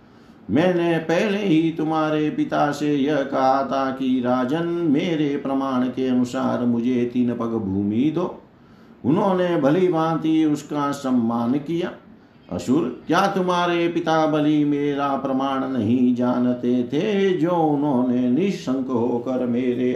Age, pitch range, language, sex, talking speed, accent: 50-69, 125-165 Hz, Hindi, male, 125 wpm, native